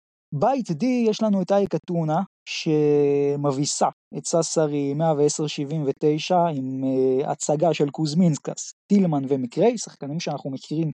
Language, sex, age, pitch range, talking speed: Hebrew, male, 20-39, 150-210 Hz, 110 wpm